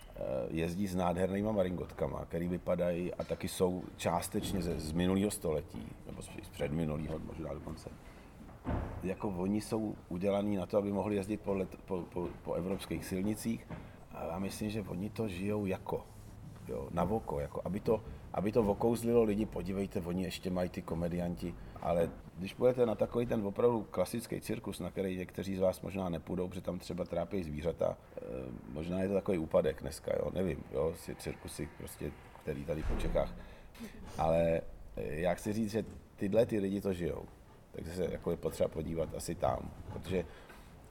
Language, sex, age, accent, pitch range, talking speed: Czech, male, 40-59, native, 85-100 Hz, 160 wpm